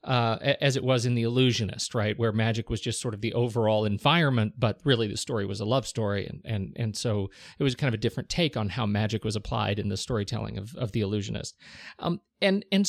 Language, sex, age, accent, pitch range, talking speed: English, male, 40-59, American, 115-150 Hz, 235 wpm